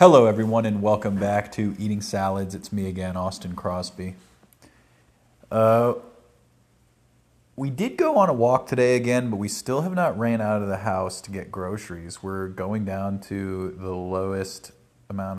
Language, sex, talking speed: English, male, 165 wpm